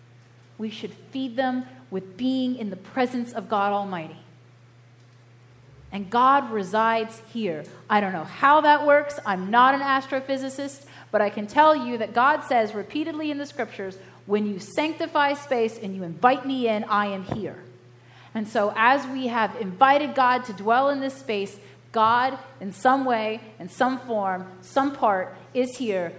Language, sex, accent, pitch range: English, female, American, 180-260 Hz